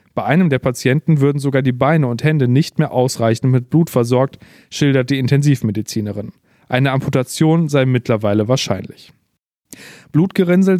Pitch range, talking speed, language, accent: 125-150 Hz, 140 wpm, German, German